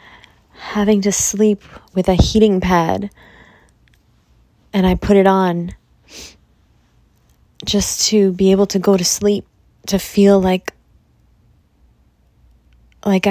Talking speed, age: 110 wpm, 20-39